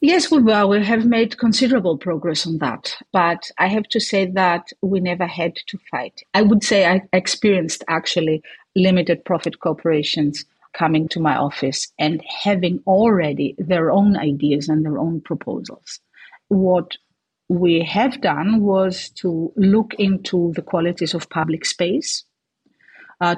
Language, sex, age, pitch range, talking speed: English, female, 50-69, 165-205 Hz, 145 wpm